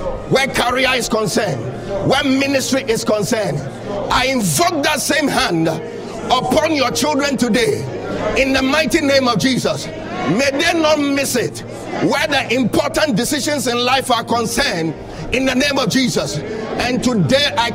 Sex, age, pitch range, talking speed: male, 50-69, 240-285 Hz, 150 wpm